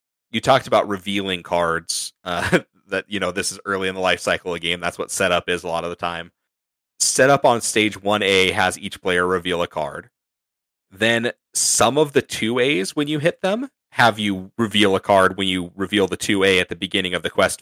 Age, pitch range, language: 30-49, 90-110 Hz, English